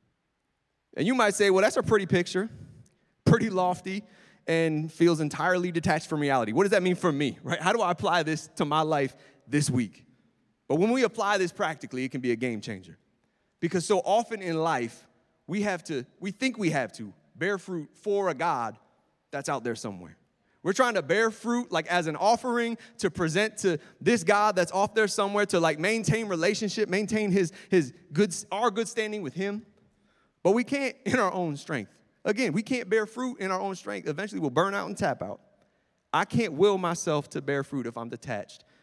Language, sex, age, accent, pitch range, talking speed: English, male, 30-49, American, 150-200 Hz, 205 wpm